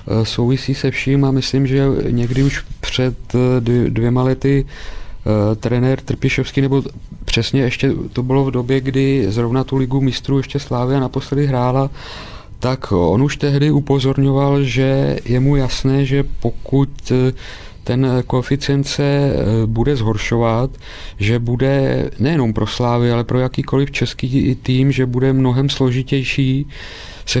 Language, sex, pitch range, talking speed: Czech, male, 120-140 Hz, 135 wpm